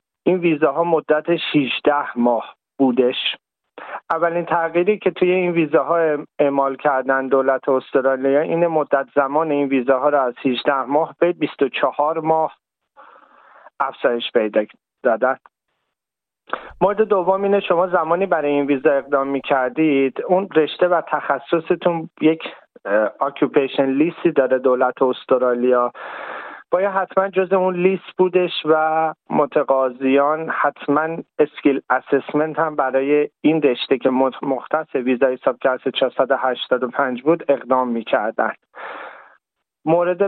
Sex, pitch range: male, 135-165 Hz